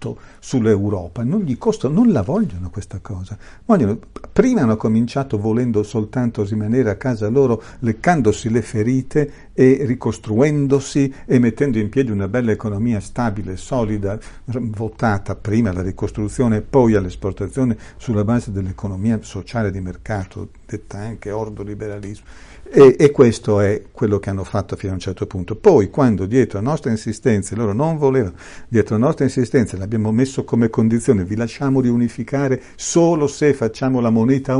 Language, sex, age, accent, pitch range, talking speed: Italian, male, 50-69, native, 105-130 Hz, 155 wpm